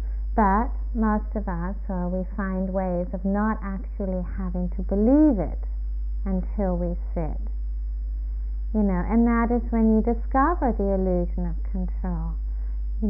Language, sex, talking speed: English, female, 140 wpm